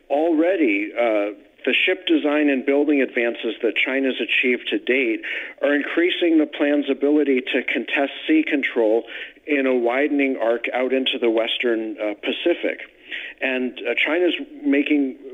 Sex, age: male, 50-69